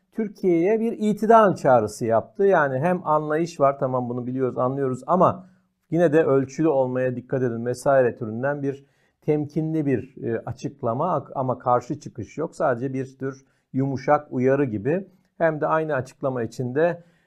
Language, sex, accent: Turkish, male, native